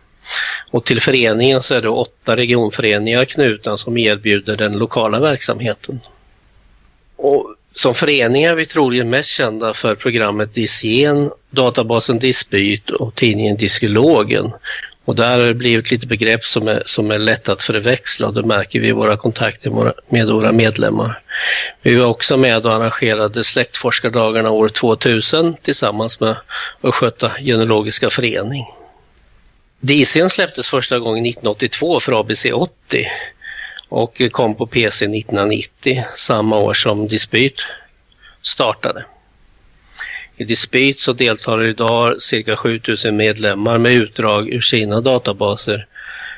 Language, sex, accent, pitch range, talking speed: Swedish, male, native, 105-125 Hz, 130 wpm